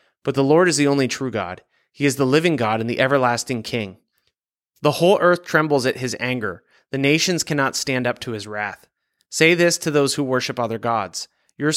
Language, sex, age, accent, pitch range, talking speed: English, male, 30-49, American, 120-150 Hz, 210 wpm